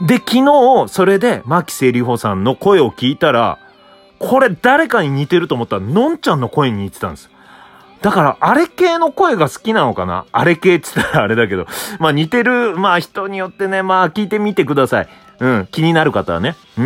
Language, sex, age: Japanese, male, 30-49